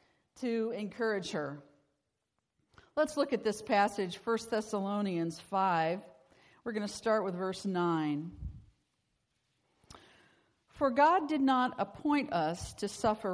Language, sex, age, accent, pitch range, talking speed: English, female, 50-69, American, 180-240 Hz, 115 wpm